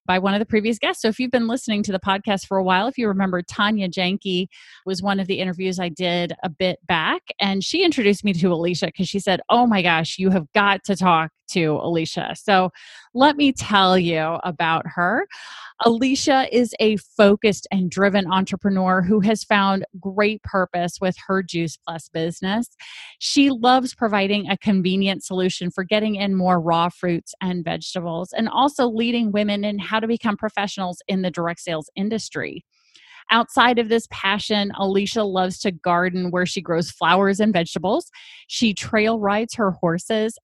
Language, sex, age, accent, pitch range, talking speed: English, female, 30-49, American, 180-215 Hz, 180 wpm